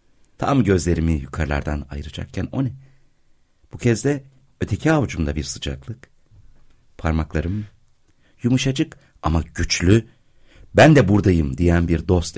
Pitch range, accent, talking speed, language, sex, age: 75-115 Hz, native, 110 wpm, Turkish, male, 60-79